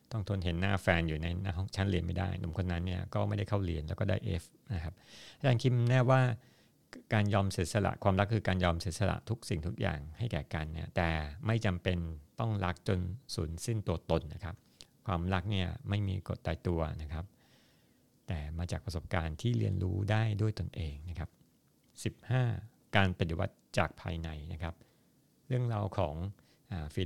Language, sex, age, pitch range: Thai, male, 60-79, 85-105 Hz